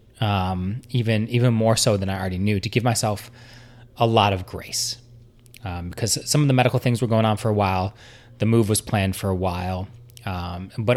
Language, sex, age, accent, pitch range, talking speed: English, male, 20-39, American, 100-120 Hz, 210 wpm